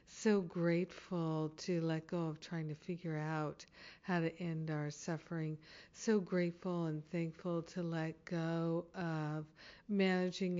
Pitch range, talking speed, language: 160-180 Hz, 135 wpm, English